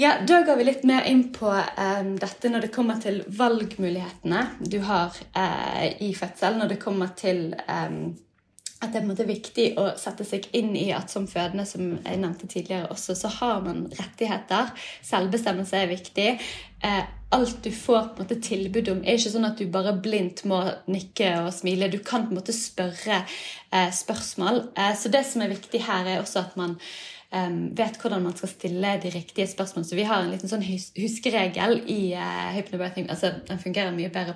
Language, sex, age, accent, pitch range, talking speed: English, female, 20-39, Swedish, 180-215 Hz, 195 wpm